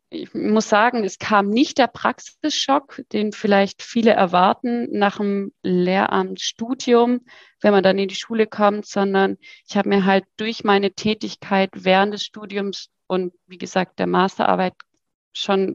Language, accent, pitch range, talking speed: German, German, 195-225 Hz, 150 wpm